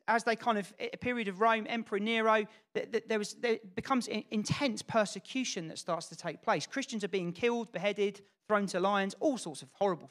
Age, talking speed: 40-59, 195 wpm